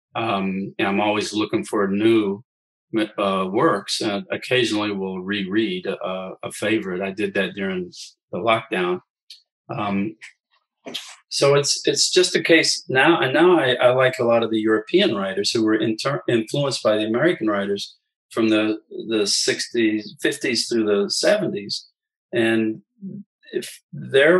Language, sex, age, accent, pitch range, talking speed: English, male, 40-59, American, 105-145 Hz, 145 wpm